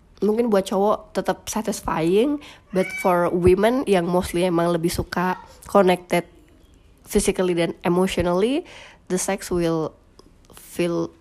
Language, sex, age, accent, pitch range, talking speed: Indonesian, female, 20-39, native, 170-210 Hz, 110 wpm